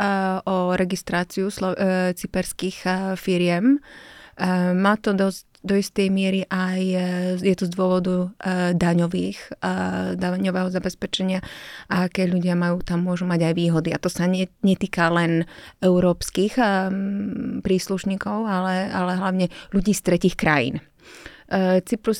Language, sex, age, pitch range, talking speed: Slovak, female, 30-49, 180-190 Hz, 115 wpm